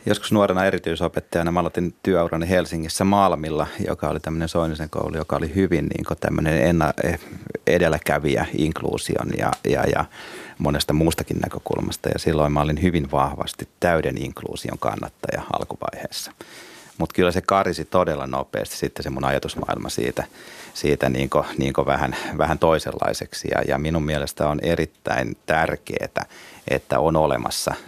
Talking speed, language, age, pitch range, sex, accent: 135 wpm, Finnish, 30-49, 75-90 Hz, male, native